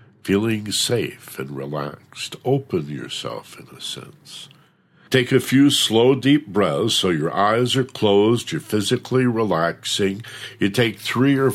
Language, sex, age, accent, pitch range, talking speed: English, male, 60-79, American, 80-125 Hz, 140 wpm